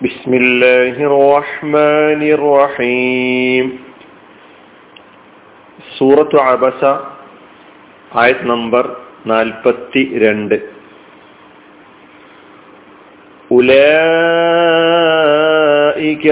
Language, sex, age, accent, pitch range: Malayalam, male, 40-59, native, 125-150 Hz